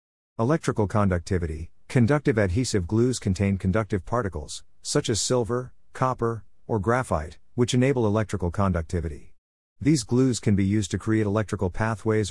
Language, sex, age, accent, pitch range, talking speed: English, male, 50-69, American, 90-115 Hz, 130 wpm